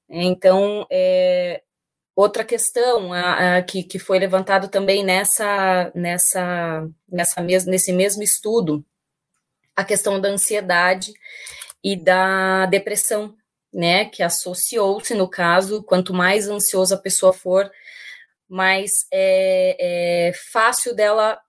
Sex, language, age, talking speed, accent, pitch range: female, Portuguese, 20-39, 115 wpm, Brazilian, 185-245 Hz